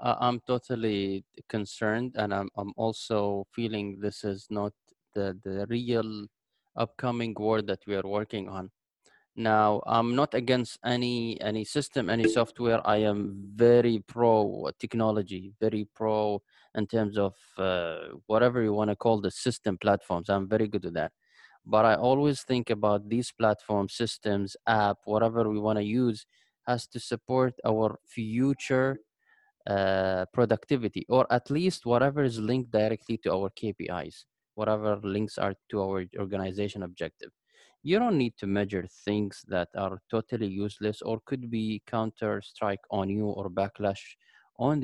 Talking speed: 150 wpm